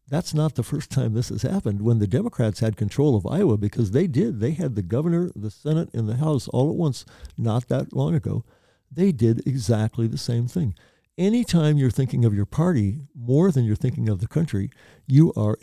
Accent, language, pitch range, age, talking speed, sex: American, English, 110-145 Hz, 60-79, 210 wpm, male